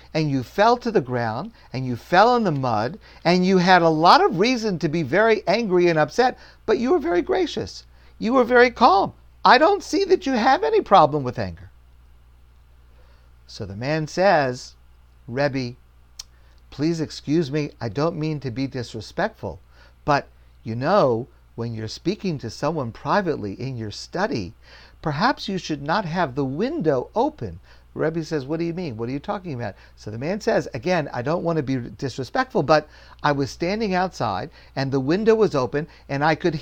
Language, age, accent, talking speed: English, 50-69, American, 185 wpm